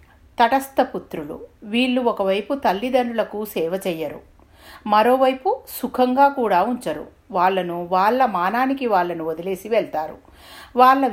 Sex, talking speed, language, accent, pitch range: female, 90 wpm, Telugu, native, 180-255 Hz